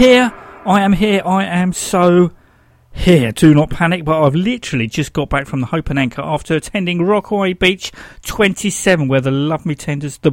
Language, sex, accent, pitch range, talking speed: English, male, British, 130-195 Hz, 190 wpm